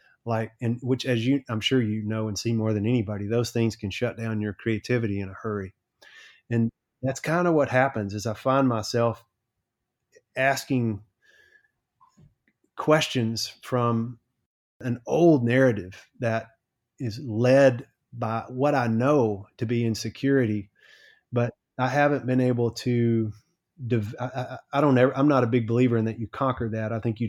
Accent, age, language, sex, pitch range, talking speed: American, 30-49, English, male, 110-135 Hz, 160 wpm